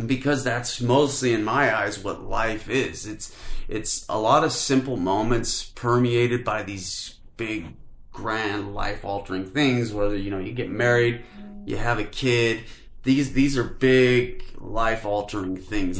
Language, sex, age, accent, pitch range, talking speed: English, male, 30-49, American, 95-120 Hz, 145 wpm